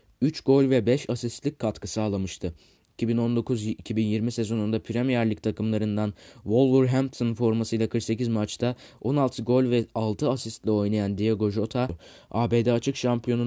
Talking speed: 120 wpm